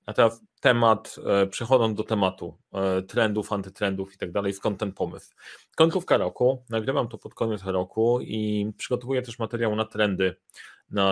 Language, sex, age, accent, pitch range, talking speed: Polish, male, 30-49, native, 100-130 Hz, 155 wpm